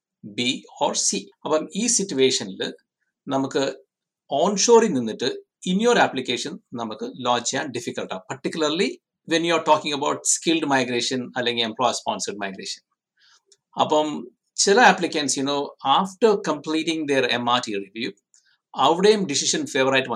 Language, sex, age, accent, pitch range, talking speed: Malayalam, male, 60-79, native, 125-195 Hz, 125 wpm